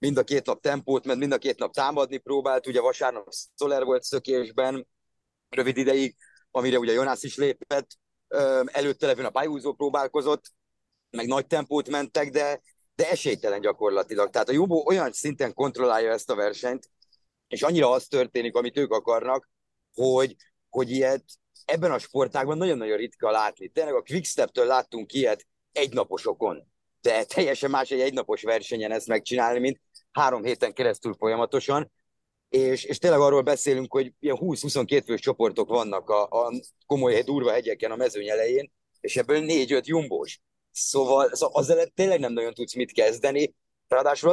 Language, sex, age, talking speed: Hungarian, male, 30-49, 155 wpm